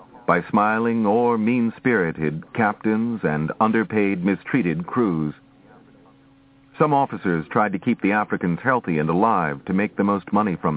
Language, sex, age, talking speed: English, male, 50-69, 140 wpm